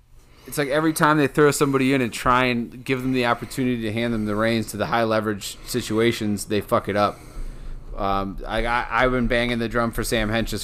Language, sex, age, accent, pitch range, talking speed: English, male, 30-49, American, 100-120 Hz, 225 wpm